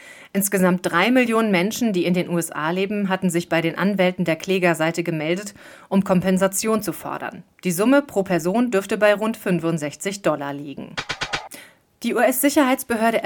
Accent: German